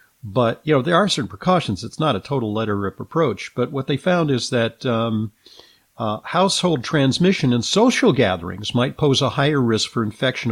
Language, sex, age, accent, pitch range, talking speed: English, male, 50-69, American, 110-145 Hz, 195 wpm